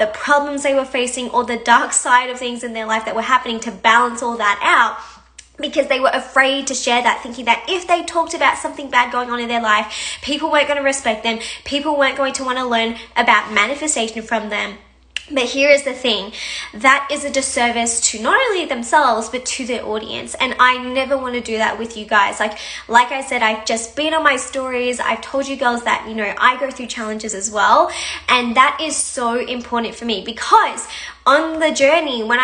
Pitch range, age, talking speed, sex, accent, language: 230-285 Hz, 10-29, 225 wpm, female, Australian, English